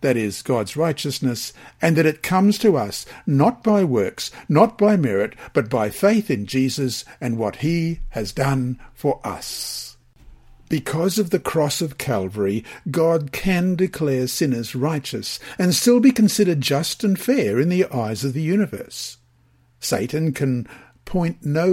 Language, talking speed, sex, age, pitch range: English, 155 wpm, male, 50-69, 125-175 Hz